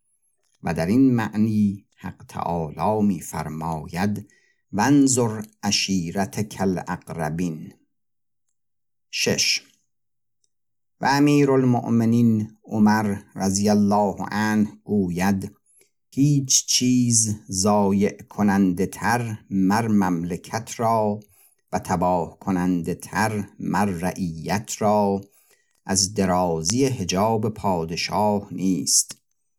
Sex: male